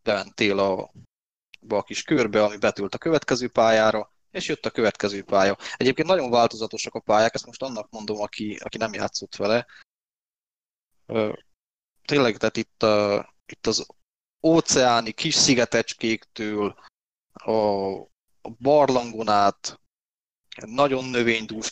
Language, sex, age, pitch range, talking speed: Hungarian, male, 20-39, 105-125 Hz, 120 wpm